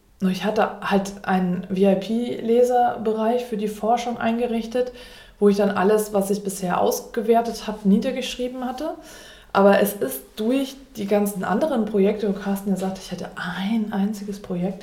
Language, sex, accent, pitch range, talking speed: German, female, German, 190-230 Hz, 150 wpm